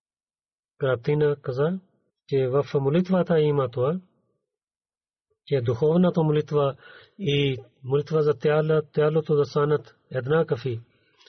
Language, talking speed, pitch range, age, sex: Bulgarian, 105 wpm, 135-175 Hz, 40-59, male